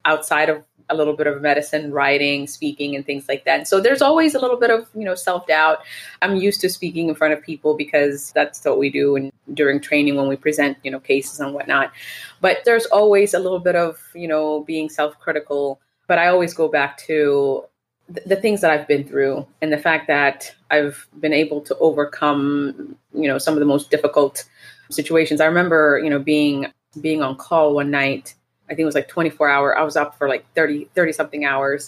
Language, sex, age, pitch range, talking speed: English, female, 20-39, 140-160 Hz, 215 wpm